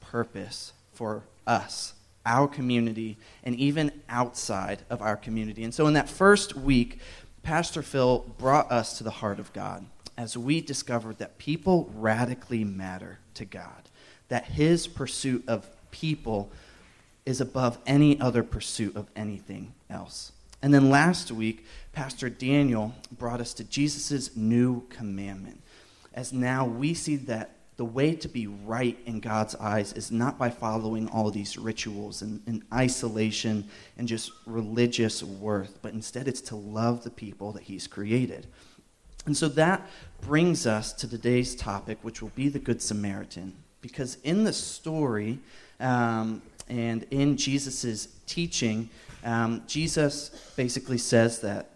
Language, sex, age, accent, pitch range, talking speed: English, male, 30-49, American, 110-135 Hz, 145 wpm